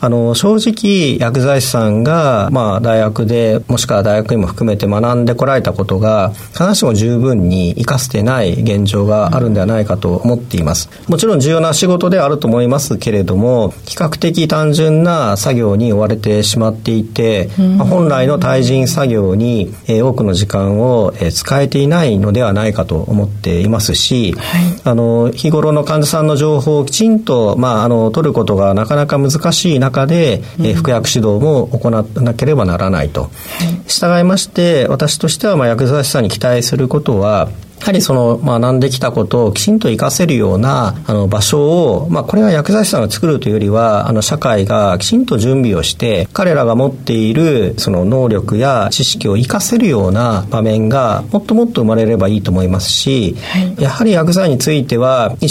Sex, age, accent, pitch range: male, 40-59, native, 110-155 Hz